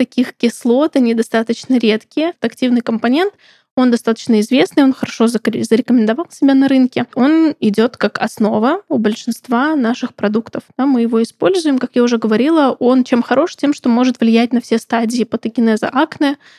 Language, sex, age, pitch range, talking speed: Russian, female, 20-39, 225-255 Hz, 155 wpm